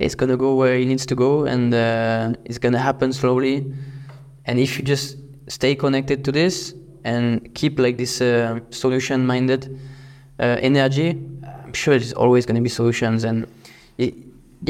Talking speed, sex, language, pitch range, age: 160 wpm, male, English, 125-140 Hz, 20-39